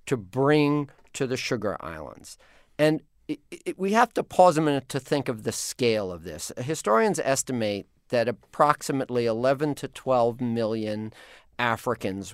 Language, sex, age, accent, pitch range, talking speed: English, male, 50-69, American, 105-145 Hz, 150 wpm